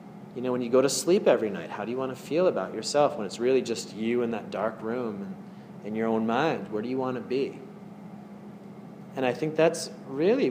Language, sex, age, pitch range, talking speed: English, male, 30-49, 115-195 Hz, 240 wpm